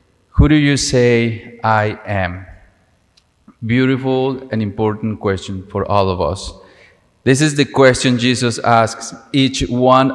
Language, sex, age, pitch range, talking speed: English, male, 30-49, 105-135 Hz, 130 wpm